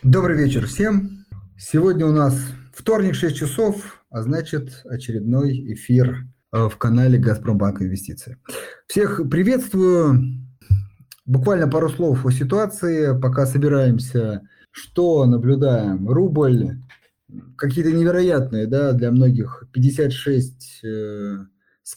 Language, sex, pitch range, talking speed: Russian, male, 120-155 Hz, 95 wpm